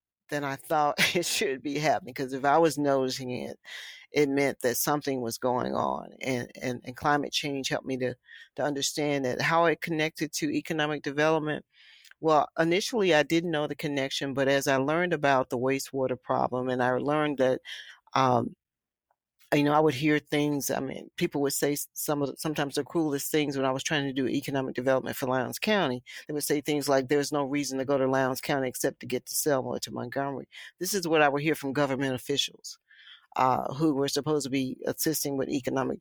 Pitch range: 135-150 Hz